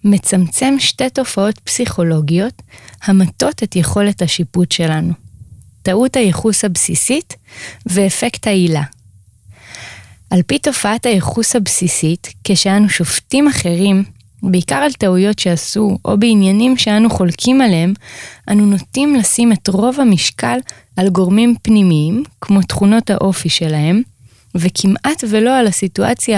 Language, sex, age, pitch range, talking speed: Hebrew, female, 20-39, 175-230 Hz, 110 wpm